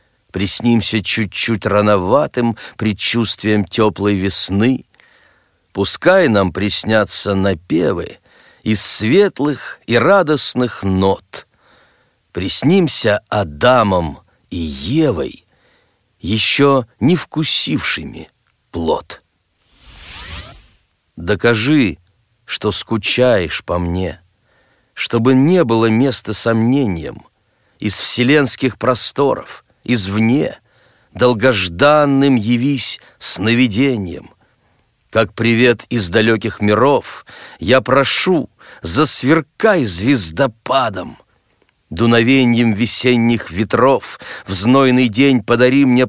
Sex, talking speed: male, 75 wpm